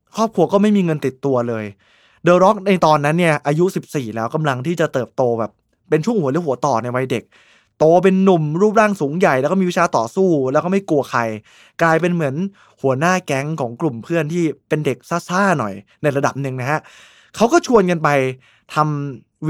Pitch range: 135-180 Hz